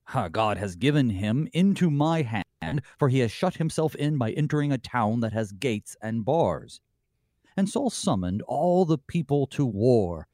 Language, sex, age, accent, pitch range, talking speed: English, male, 40-59, American, 105-150 Hz, 175 wpm